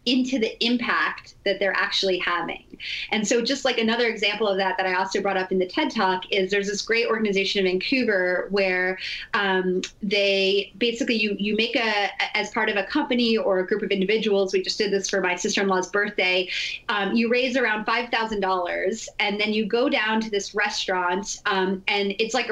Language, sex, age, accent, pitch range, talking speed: English, female, 30-49, American, 195-230 Hz, 195 wpm